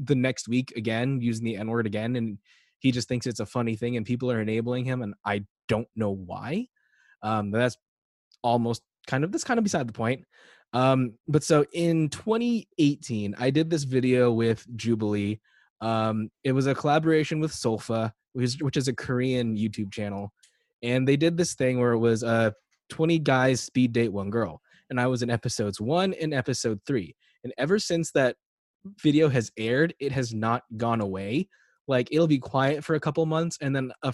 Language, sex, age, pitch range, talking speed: English, male, 20-39, 115-145 Hz, 190 wpm